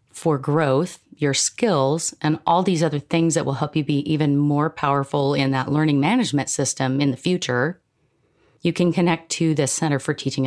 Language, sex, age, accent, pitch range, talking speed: English, female, 40-59, American, 135-170 Hz, 190 wpm